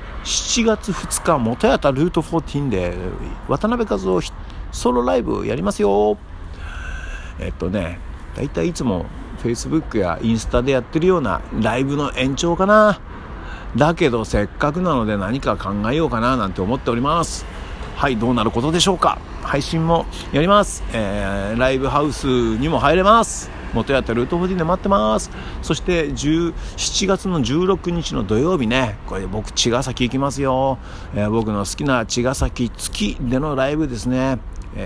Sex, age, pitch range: male, 50-69, 100-150 Hz